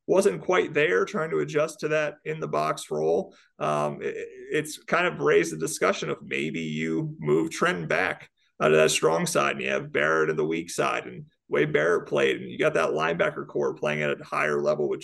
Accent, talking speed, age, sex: American, 215 wpm, 30-49, male